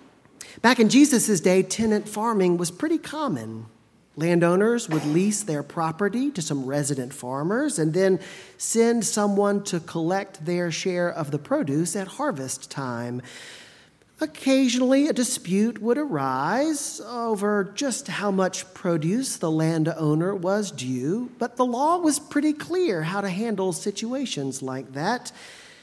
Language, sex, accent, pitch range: English, male, American, 155-235 Hz